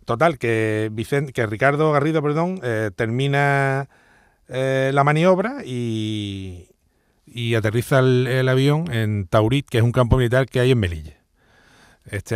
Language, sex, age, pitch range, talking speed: Spanish, male, 40-59, 110-145 Hz, 145 wpm